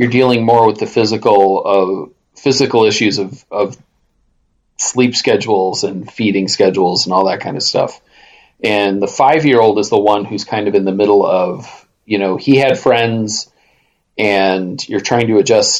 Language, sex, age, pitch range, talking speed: English, male, 40-59, 100-130 Hz, 170 wpm